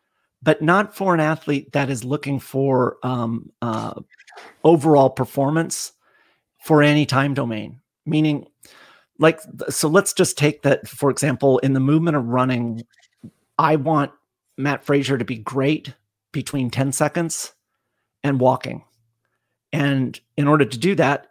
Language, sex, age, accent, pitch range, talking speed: English, male, 40-59, American, 130-155 Hz, 140 wpm